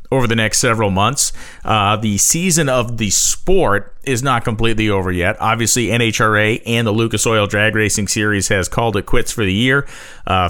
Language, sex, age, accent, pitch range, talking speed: English, male, 30-49, American, 95-115 Hz, 190 wpm